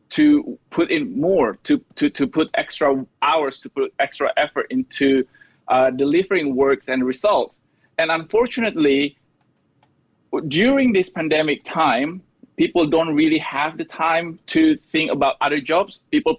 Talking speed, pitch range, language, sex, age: 140 wpm, 140-205 Hz, English, male, 20-39